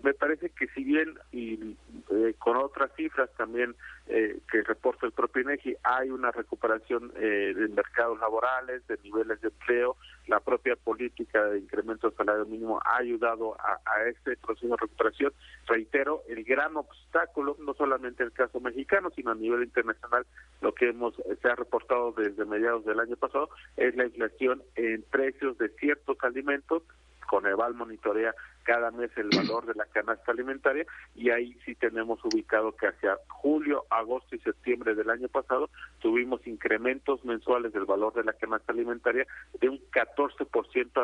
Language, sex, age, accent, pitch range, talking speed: Spanish, male, 40-59, Mexican, 115-145 Hz, 165 wpm